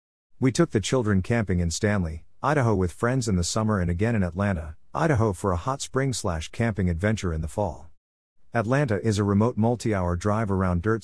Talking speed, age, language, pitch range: 195 wpm, 50-69, English, 90-115 Hz